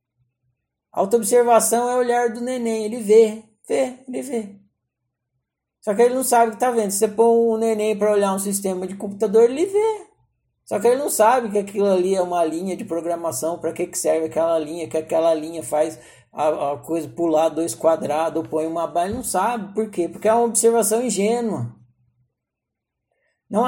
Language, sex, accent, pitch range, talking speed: Portuguese, male, Brazilian, 165-235 Hz, 195 wpm